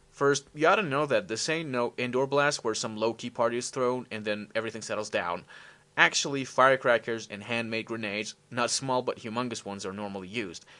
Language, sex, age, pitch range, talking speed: English, male, 30-49, 105-140 Hz, 195 wpm